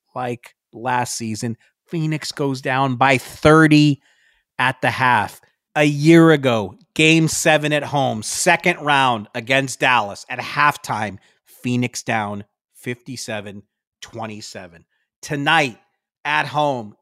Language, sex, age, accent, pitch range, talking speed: English, male, 40-59, American, 115-150 Hz, 105 wpm